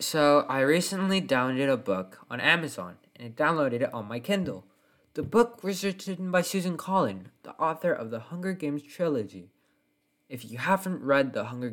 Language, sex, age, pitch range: English, male, 20-39, 110-160 Hz